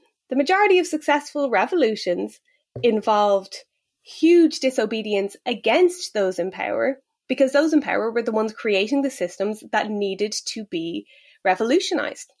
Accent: Irish